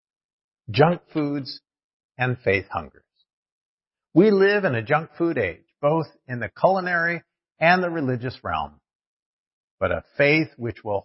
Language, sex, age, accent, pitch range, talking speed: English, male, 50-69, American, 125-175 Hz, 135 wpm